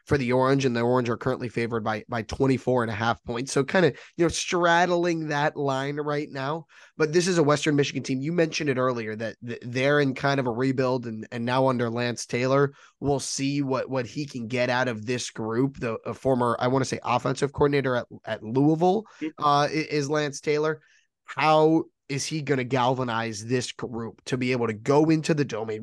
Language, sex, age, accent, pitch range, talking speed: English, male, 20-39, American, 125-155 Hz, 215 wpm